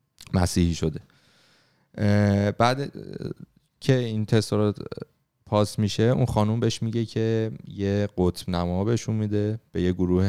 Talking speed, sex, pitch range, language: 120 wpm, male, 90-110 Hz, Persian